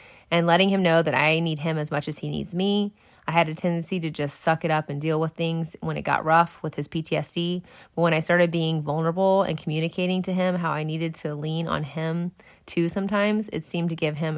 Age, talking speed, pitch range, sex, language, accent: 30-49, 240 wpm, 155-175 Hz, female, English, American